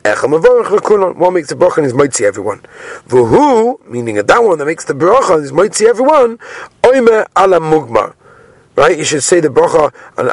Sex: male